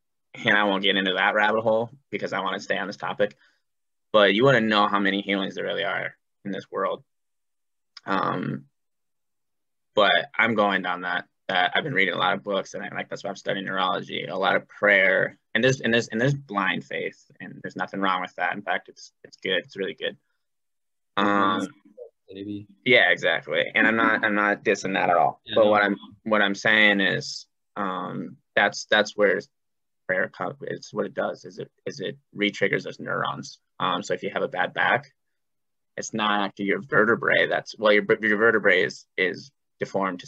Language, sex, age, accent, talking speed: English, male, 10-29, American, 200 wpm